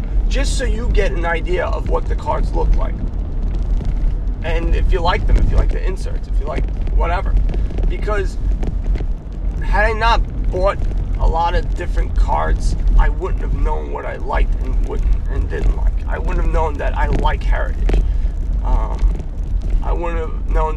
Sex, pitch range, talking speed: male, 75-85 Hz, 175 wpm